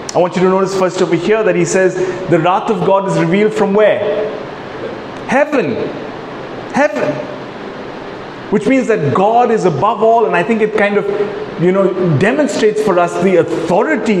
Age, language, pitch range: 30-49, English, 190-235 Hz